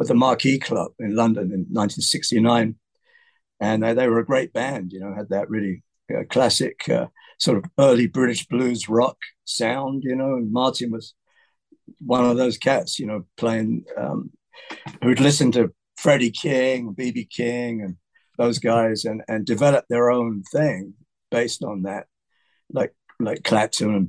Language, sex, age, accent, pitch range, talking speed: English, male, 50-69, British, 105-130 Hz, 160 wpm